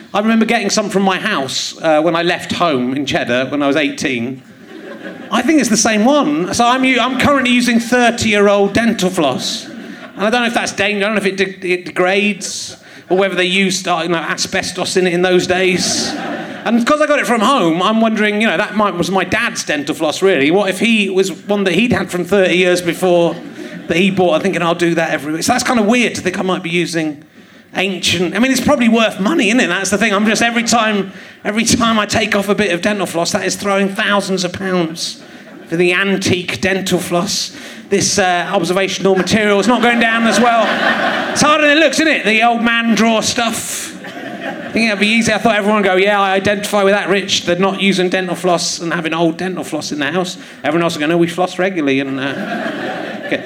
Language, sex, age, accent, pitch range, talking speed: English, male, 30-49, British, 175-225 Hz, 240 wpm